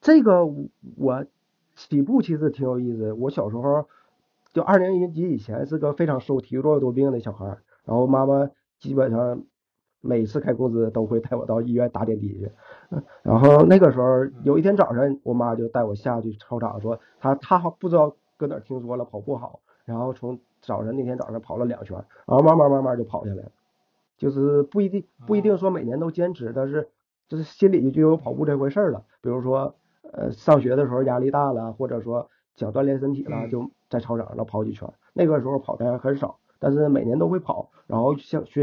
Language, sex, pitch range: Chinese, male, 115-145 Hz